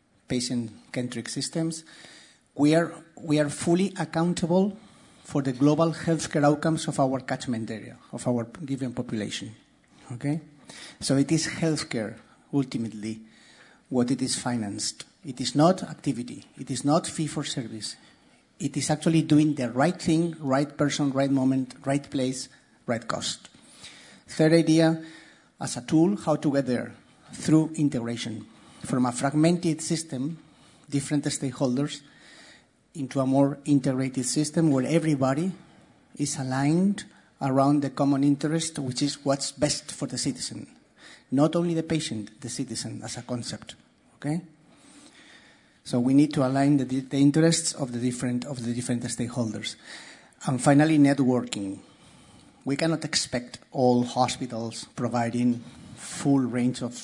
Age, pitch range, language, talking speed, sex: 50-69, 125-155 Hz, English, 135 wpm, male